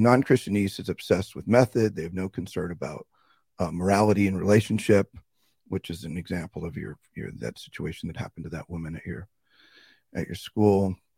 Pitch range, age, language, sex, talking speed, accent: 90-115 Hz, 40-59, English, male, 180 wpm, American